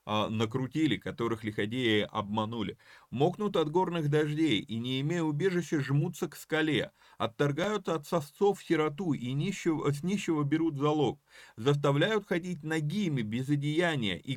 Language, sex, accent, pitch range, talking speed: Russian, male, native, 120-165 Hz, 130 wpm